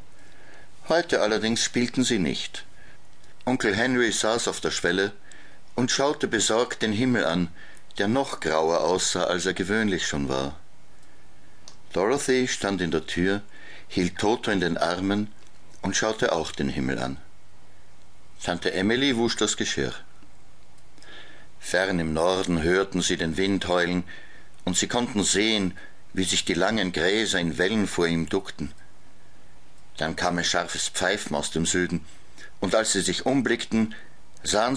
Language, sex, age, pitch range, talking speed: German, male, 60-79, 80-110 Hz, 145 wpm